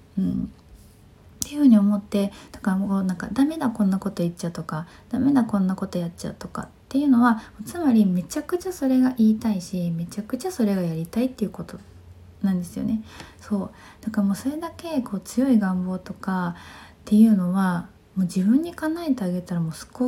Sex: female